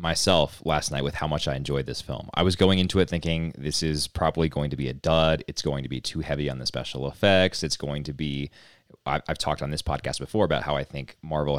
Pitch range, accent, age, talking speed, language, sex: 75-90 Hz, American, 30-49, 255 wpm, English, male